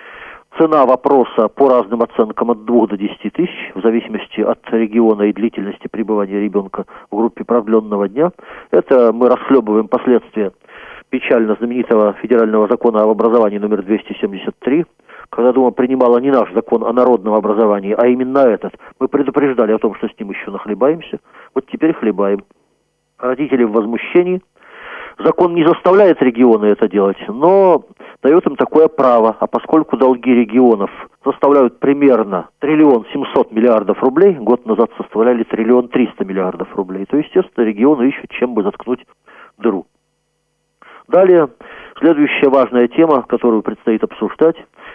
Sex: male